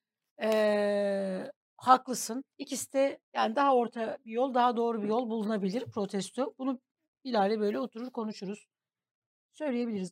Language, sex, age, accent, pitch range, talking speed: Turkish, female, 60-79, native, 195-250 Hz, 125 wpm